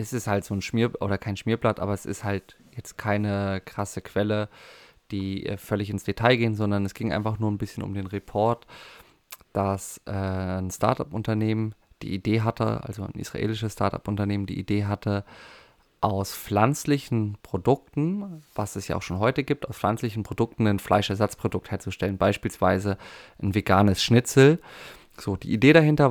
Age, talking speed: 20-39, 160 wpm